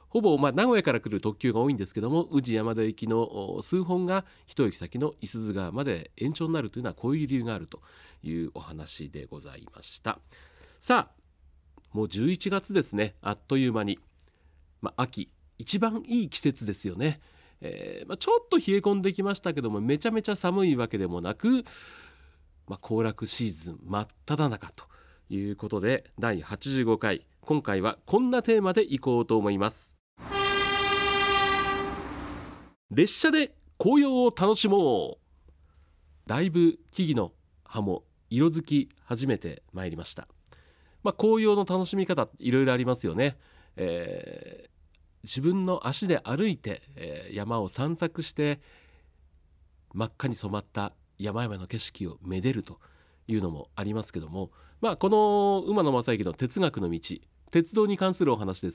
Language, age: Japanese, 40-59